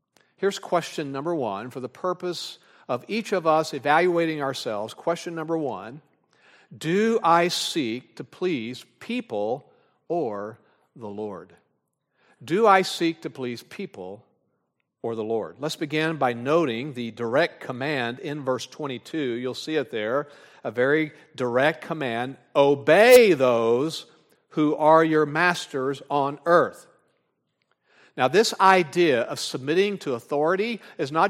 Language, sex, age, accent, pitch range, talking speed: English, male, 50-69, American, 140-185 Hz, 130 wpm